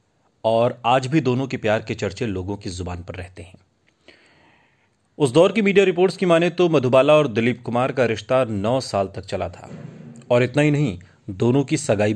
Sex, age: male, 40-59